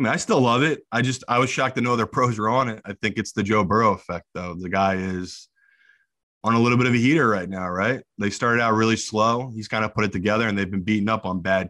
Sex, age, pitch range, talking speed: male, 20-39, 100-115 Hz, 290 wpm